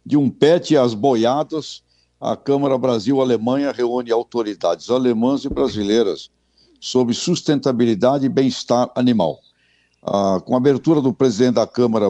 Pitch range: 105-135 Hz